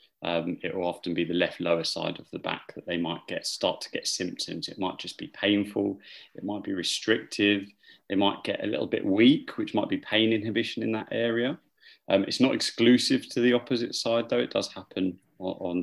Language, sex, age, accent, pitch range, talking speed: English, male, 30-49, British, 85-110 Hz, 215 wpm